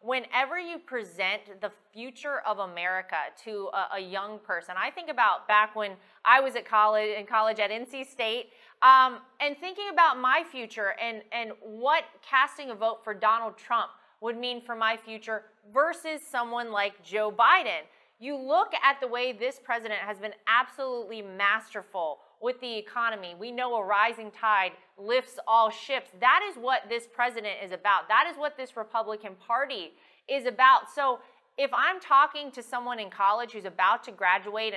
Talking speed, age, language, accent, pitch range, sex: 170 wpm, 30-49, English, American, 215-275 Hz, female